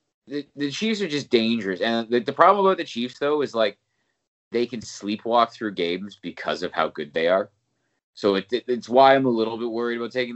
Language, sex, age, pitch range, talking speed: English, male, 30-49, 100-130 Hz, 225 wpm